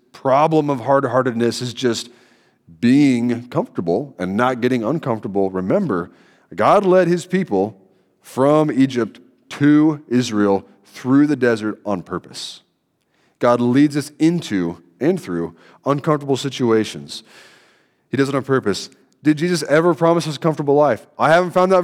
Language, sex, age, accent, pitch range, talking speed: English, male, 30-49, American, 115-155 Hz, 135 wpm